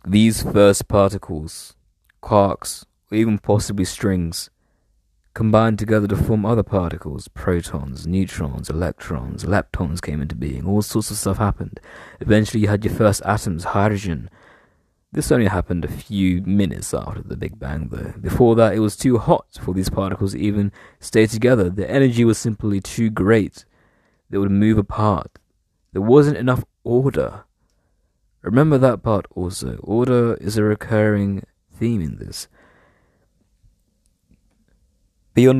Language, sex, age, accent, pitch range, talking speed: English, male, 20-39, British, 90-110 Hz, 140 wpm